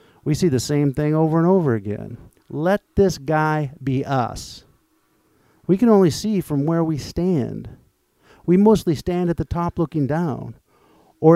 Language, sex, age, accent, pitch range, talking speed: English, male, 50-69, American, 130-185 Hz, 165 wpm